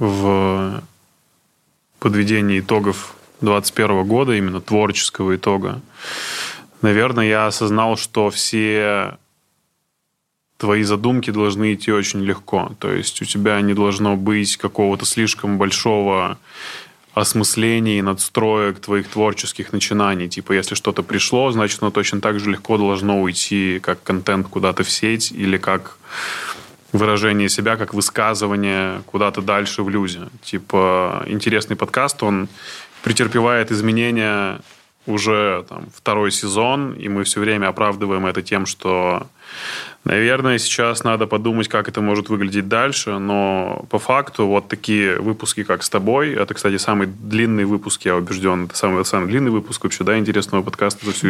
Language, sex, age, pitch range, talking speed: Russian, male, 20-39, 100-110 Hz, 135 wpm